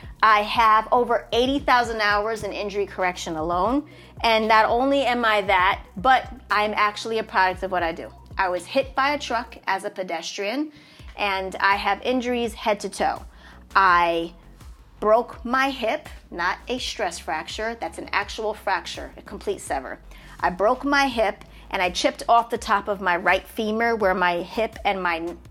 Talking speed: 175 wpm